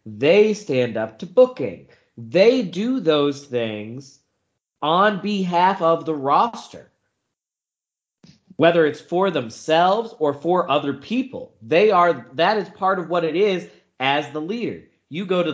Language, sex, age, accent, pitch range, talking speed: English, male, 20-39, American, 125-175 Hz, 145 wpm